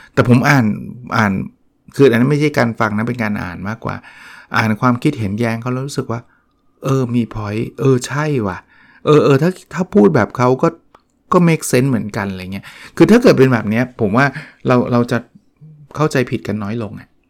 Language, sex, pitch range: Thai, male, 110-140 Hz